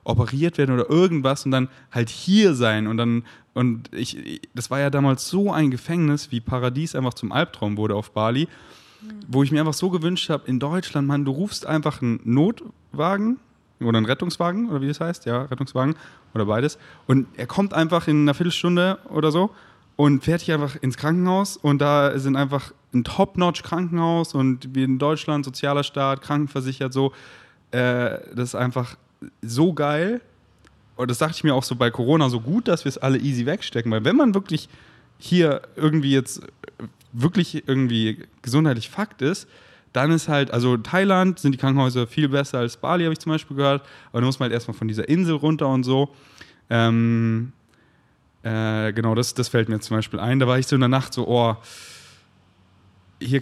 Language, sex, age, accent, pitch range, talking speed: German, male, 10-29, German, 120-155 Hz, 190 wpm